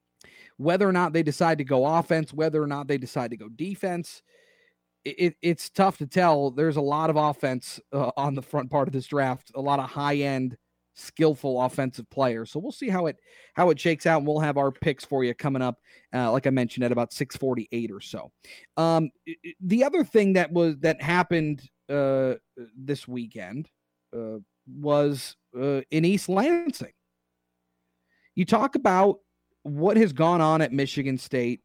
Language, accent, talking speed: English, American, 185 wpm